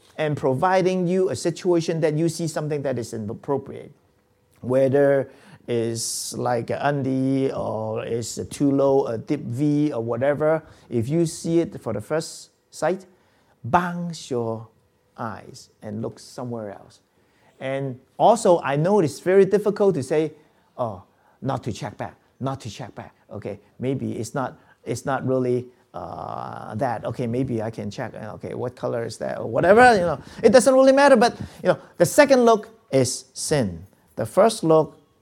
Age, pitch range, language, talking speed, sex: 50-69, 120-165 Hz, English, 165 wpm, male